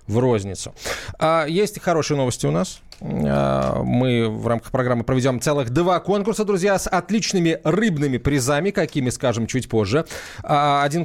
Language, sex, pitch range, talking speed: Russian, male, 125-195 Hz, 135 wpm